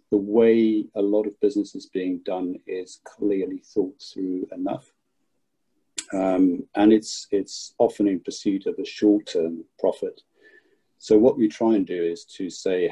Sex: male